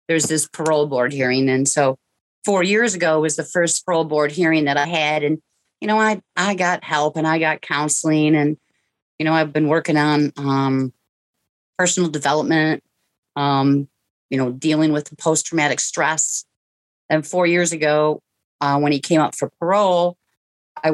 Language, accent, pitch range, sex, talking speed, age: English, American, 140-165 Hz, female, 170 wpm, 40-59